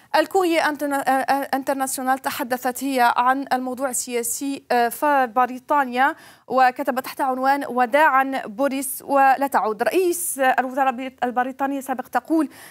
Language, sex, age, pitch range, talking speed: Arabic, female, 30-49, 255-290 Hz, 105 wpm